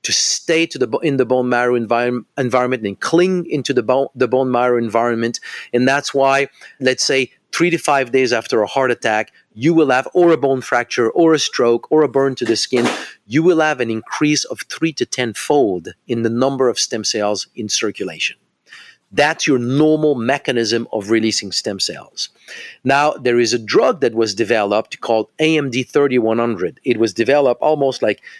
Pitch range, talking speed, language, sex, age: 120-160 Hz, 180 wpm, English, male, 40-59